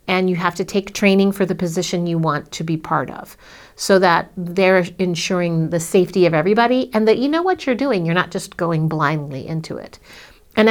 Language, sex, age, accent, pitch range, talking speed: English, female, 50-69, American, 160-195 Hz, 215 wpm